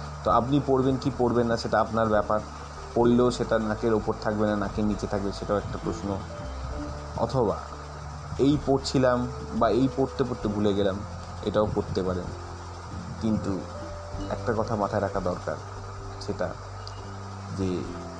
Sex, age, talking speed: male, 30-49, 135 wpm